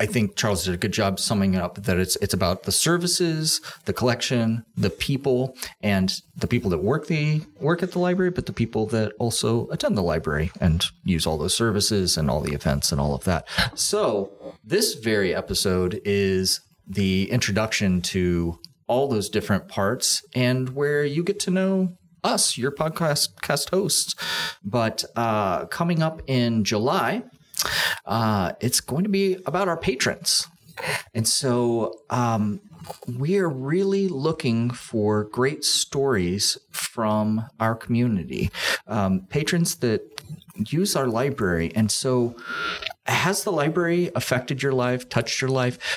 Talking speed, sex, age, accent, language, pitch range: 155 wpm, male, 30-49, American, English, 100-155 Hz